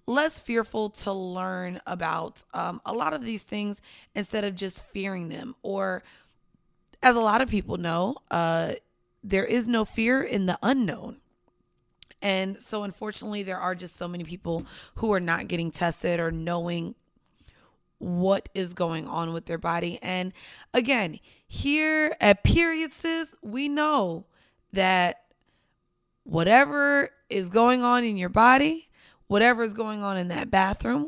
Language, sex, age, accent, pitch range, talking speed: English, female, 20-39, American, 180-245 Hz, 145 wpm